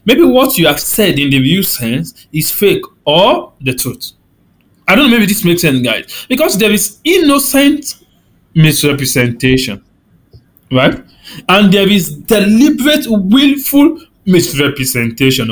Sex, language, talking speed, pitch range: male, English, 130 wpm, 150-240 Hz